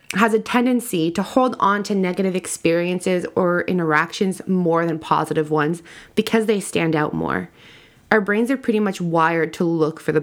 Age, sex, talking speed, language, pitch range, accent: 20-39, female, 175 wpm, English, 170-230 Hz, American